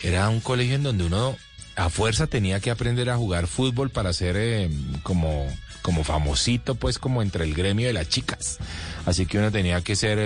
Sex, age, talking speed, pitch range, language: male, 30-49, 200 wpm, 95-145 Hz, Spanish